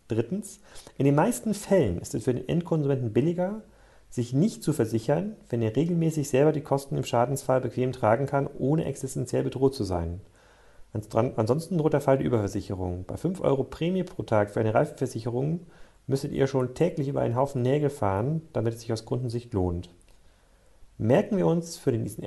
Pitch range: 105-150 Hz